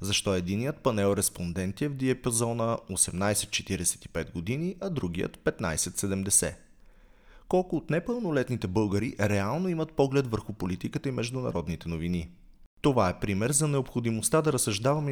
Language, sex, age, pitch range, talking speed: Bulgarian, male, 30-49, 95-130 Hz, 125 wpm